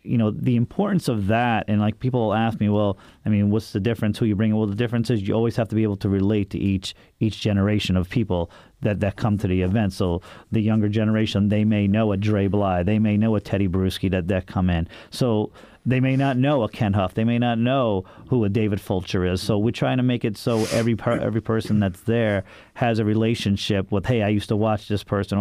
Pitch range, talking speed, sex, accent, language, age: 100-115 Hz, 250 wpm, male, American, English, 40-59